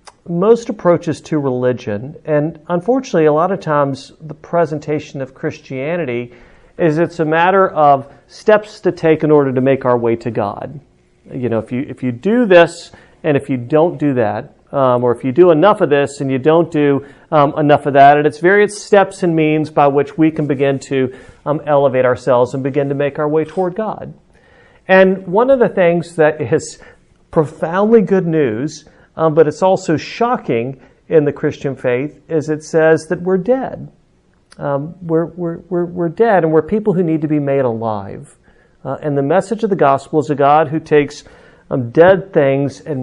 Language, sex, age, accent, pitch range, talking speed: English, male, 40-59, American, 140-180 Hz, 195 wpm